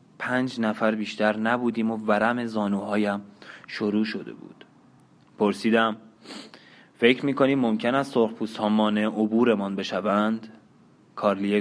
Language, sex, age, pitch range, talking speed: Persian, male, 20-39, 105-125 Hz, 100 wpm